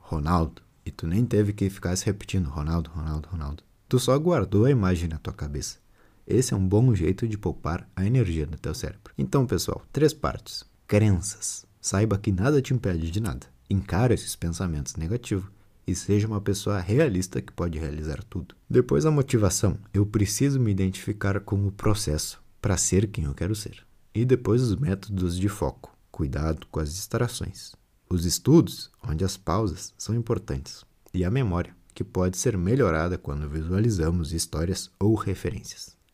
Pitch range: 90-115 Hz